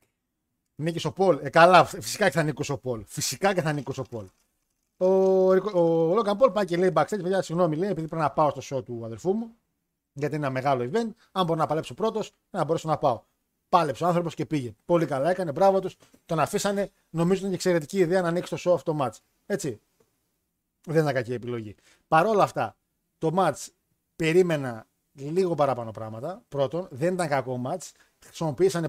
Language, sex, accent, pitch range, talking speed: Greek, male, native, 140-185 Hz, 205 wpm